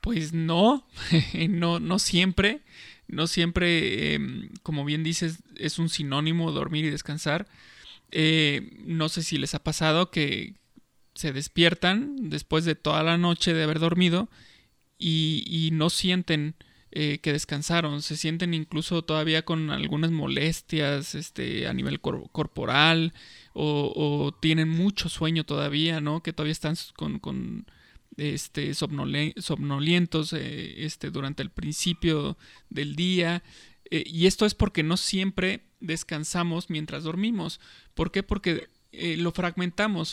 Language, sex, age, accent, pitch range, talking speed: Spanish, male, 20-39, Mexican, 155-175 Hz, 135 wpm